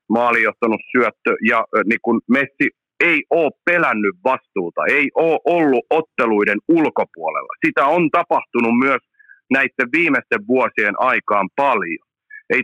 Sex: male